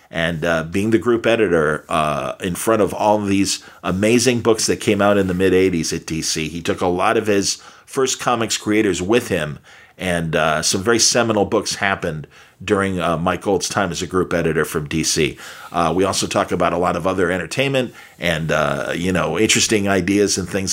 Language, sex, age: English, male, 50-69